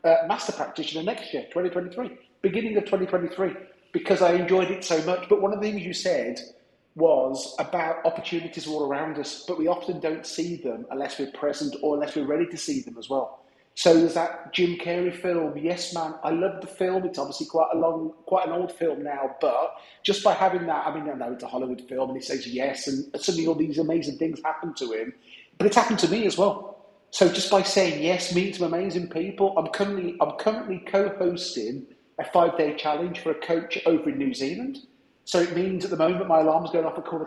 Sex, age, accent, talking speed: male, 40-59, British, 220 wpm